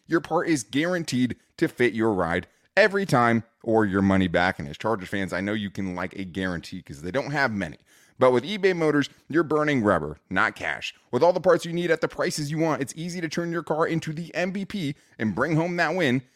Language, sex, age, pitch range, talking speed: English, male, 30-49, 110-165 Hz, 235 wpm